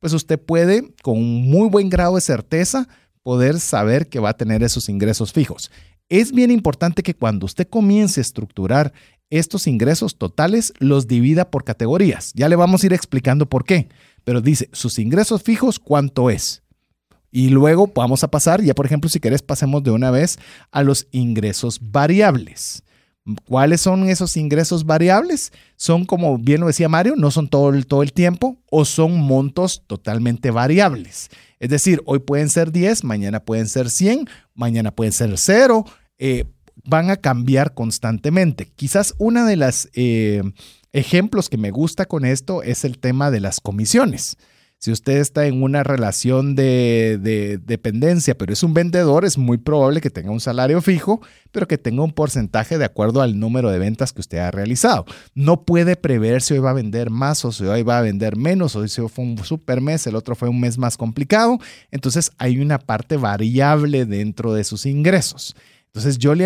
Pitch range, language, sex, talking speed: 115-170 Hz, Spanish, male, 180 wpm